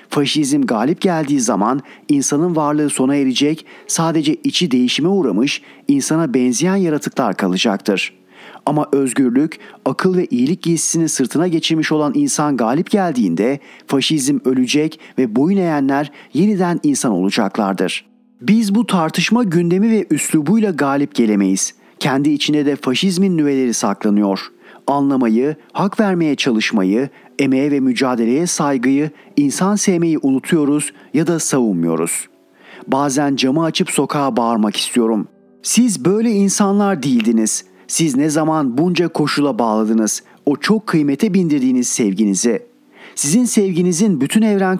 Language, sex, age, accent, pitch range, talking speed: Turkish, male, 40-59, native, 130-185 Hz, 120 wpm